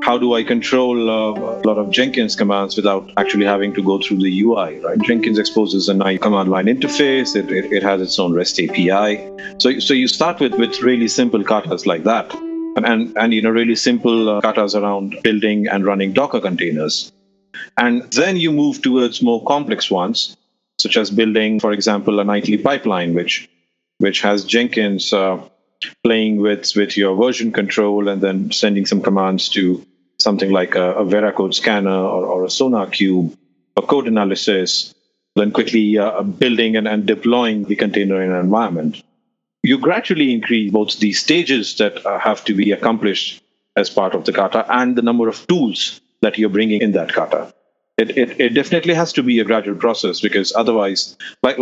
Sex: male